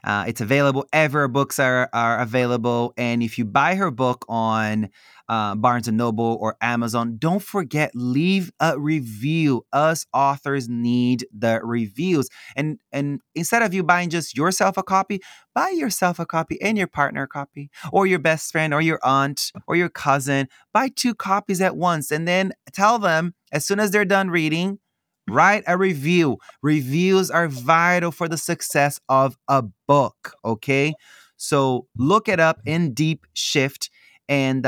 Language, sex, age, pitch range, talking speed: English, male, 20-39, 125-180 Hz, 165 wpm